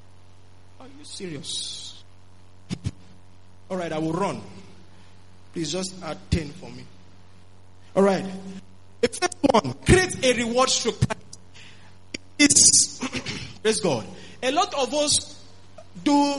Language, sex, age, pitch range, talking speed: English, male, 20-39, 180-255 Hz, 100 wpm